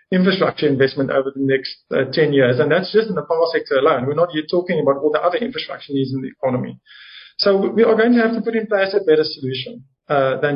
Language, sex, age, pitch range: English, male, 50-69, 140-190 Hz